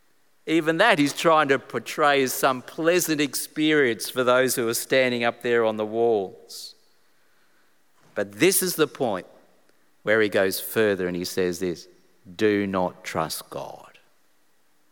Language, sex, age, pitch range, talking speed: English, male, 50-69, 100-135 Hz, 150 wpm